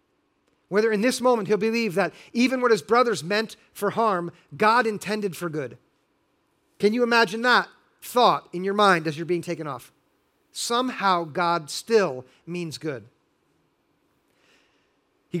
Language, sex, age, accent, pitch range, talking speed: English, male, 40-59, American, 180-225 Hz, 145 wpm